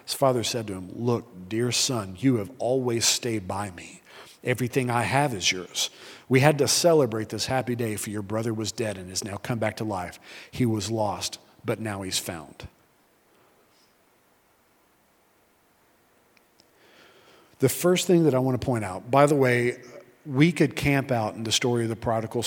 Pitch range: 110-135 Hz